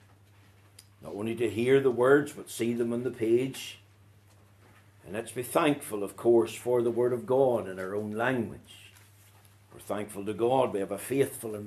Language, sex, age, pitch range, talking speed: English, male, 60-79, 100-145 Hz, 185 wpm